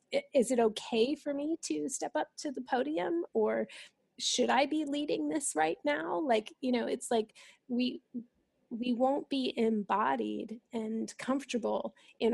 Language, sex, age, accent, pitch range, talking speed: English, female, 30-49, American, 215-265 Hz, 155 wpm